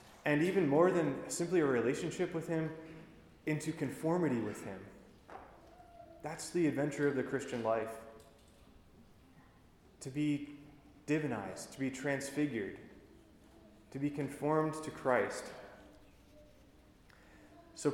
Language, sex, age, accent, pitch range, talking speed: English, male, 20-39, American, 140-175 Hz, 105 wpm